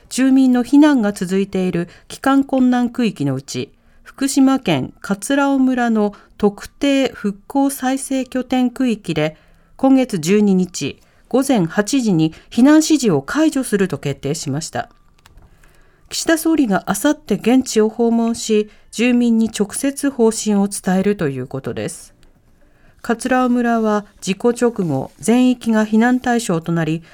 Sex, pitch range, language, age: female, 185-265 Hz, Japanese, 40-59